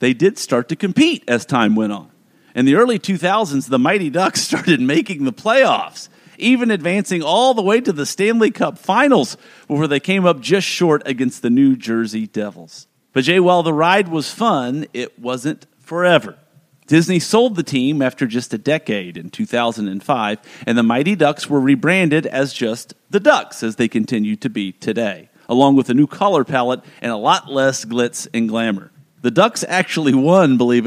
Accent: American